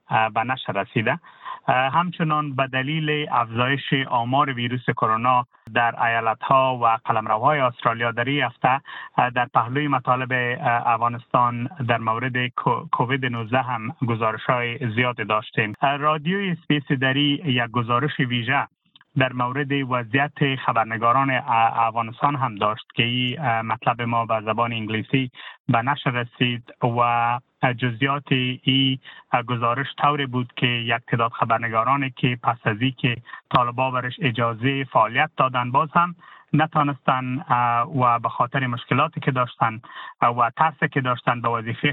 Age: 30-49